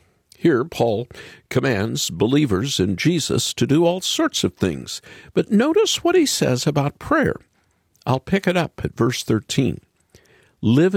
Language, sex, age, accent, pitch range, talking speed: English, male, 50-69, American, 110-170 Hz, 150 wpm